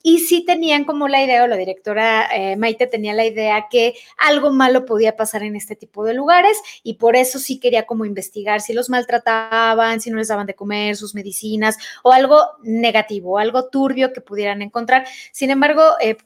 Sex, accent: female, Mexican